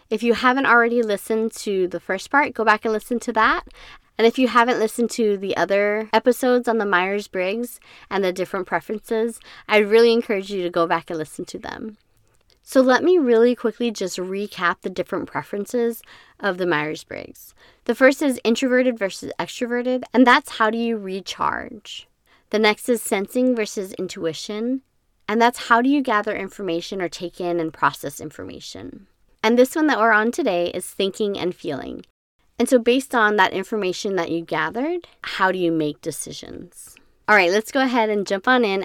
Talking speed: 185 wpm